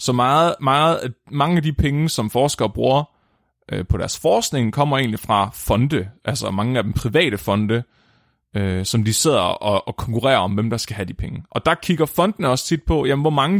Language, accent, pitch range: Danish, native, 115-150 Hz